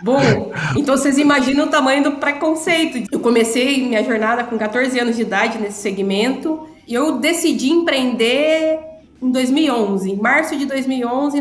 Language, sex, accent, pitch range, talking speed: Portuguese, female, Brazilian, 225-275 Hz, 155 wpm